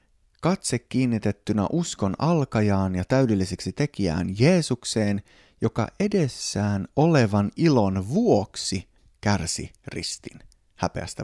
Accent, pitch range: native, 100-135 Hz